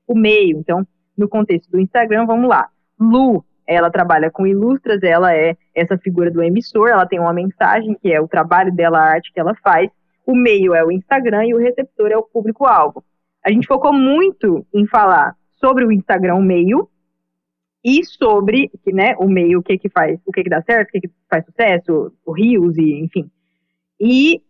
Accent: Brazilian